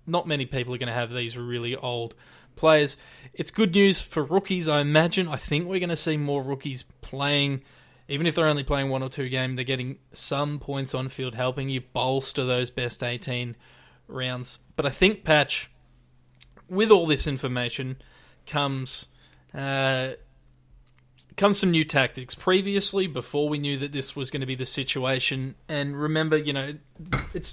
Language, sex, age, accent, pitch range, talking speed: English, male, 20-39, Australian, 125-150 Hz, 175 wpm